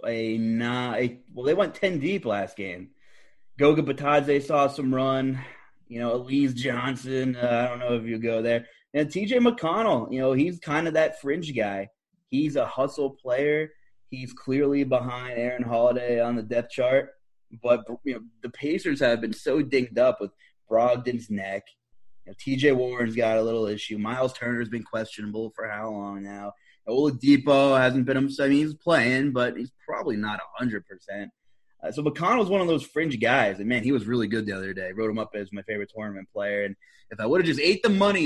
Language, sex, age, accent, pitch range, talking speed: English, male, 20-39, American, 110-140 Hz, 195 wpm